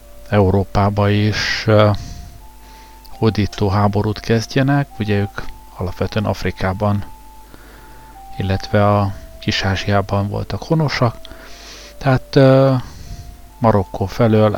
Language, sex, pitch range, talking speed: Hungarian, male, 100-115 Hz, 80 wpm